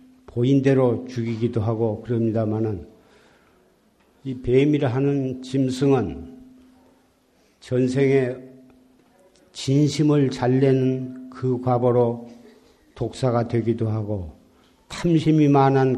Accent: native